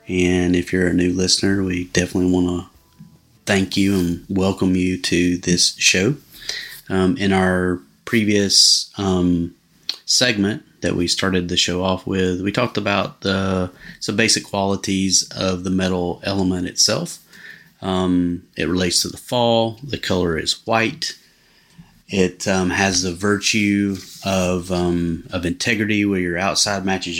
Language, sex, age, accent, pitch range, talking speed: English, male, 30-49, American, 90-100 Hz, 145 wpm